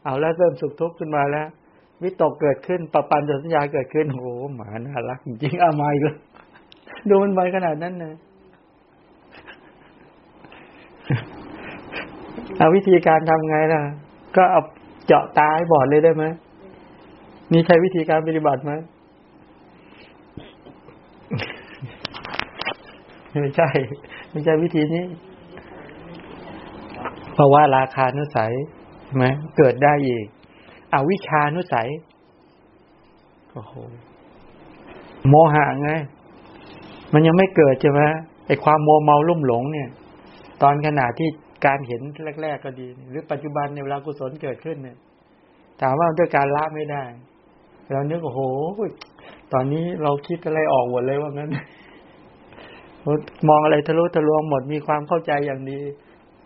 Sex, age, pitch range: male, 60-79, 140-160 Hz